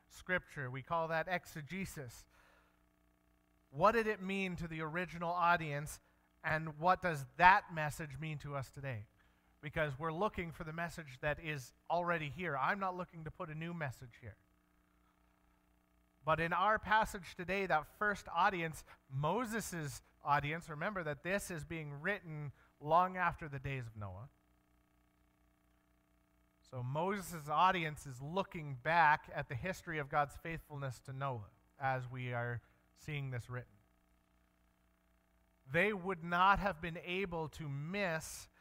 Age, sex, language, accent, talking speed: 40-59, male, English, American, 140 wpm